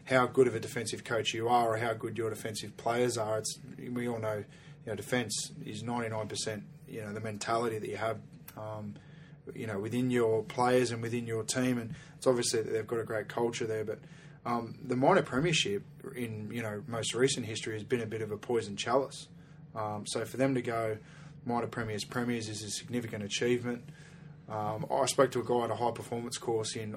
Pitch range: 110-130 Hz